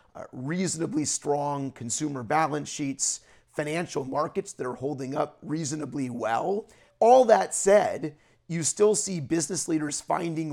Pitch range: 135-165 Hz